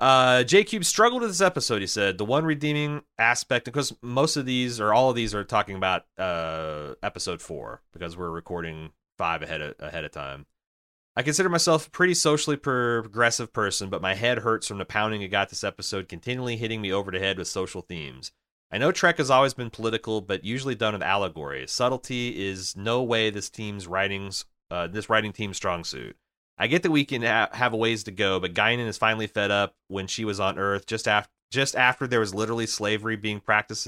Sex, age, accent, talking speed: male, 30-49, American, 215 wpm